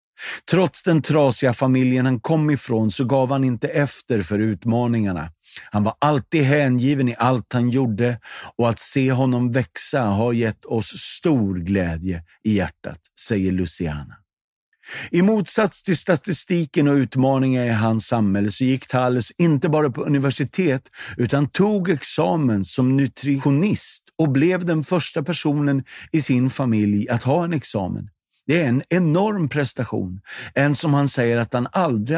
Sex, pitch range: male, 110-145 Hz